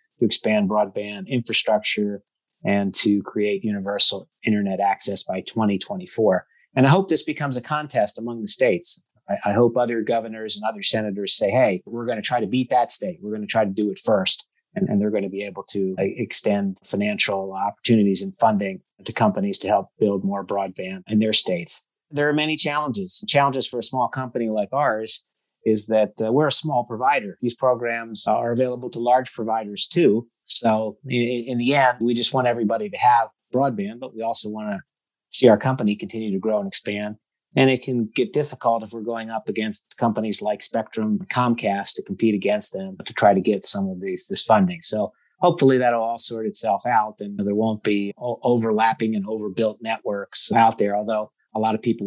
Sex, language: male, English